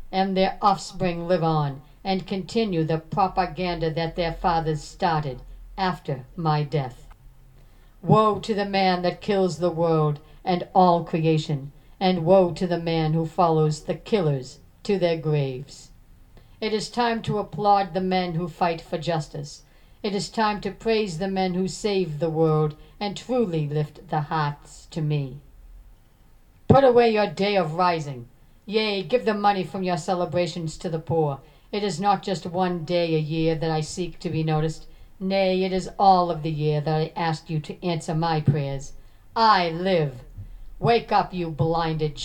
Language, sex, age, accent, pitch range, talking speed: English, female, 60-79, American, 155-190 Hz, 170 wpm